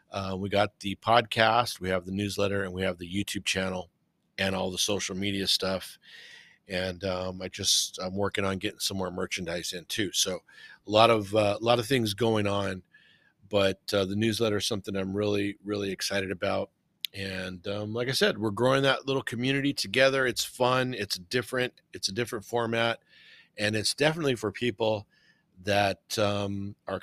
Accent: American